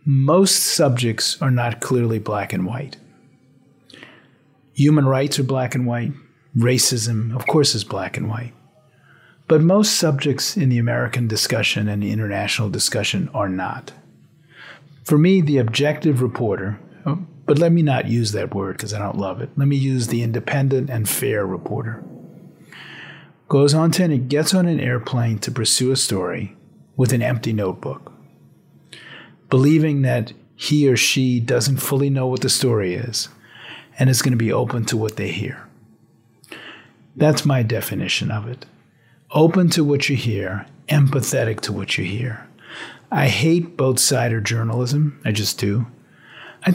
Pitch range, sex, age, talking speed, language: 120-145 Hz, male, 40-59, 155 wpm, English